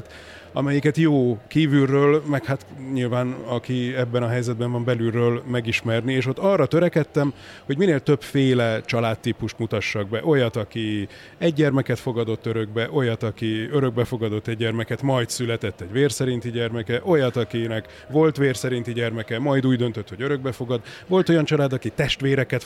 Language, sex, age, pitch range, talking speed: Hungarian, male, 30-49, 115-135 Hz, 150 wpm